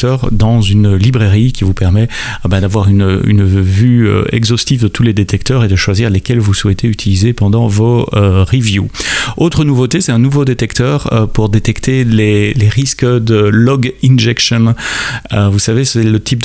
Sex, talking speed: male, 180 wpm